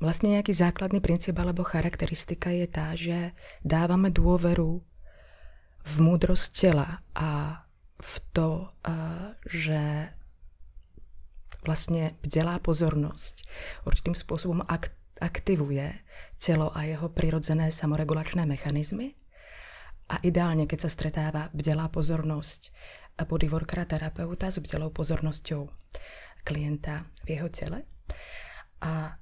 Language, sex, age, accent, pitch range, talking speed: Czech, female, 20-39, native, 150-170 Hz, 95 wpm